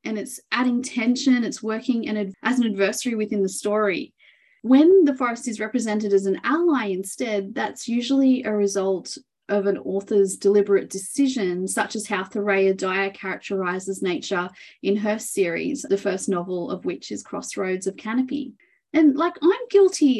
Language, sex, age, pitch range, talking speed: English, female, 30-49, 200-255 Hz, 155 wpm